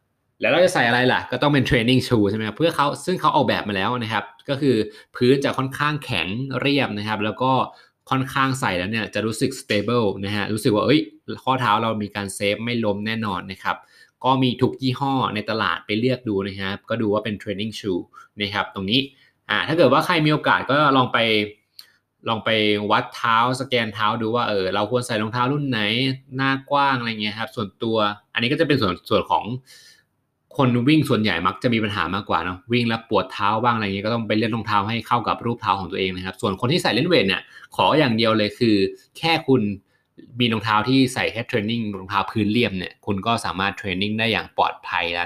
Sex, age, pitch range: male, 20-39, 105-130 Hz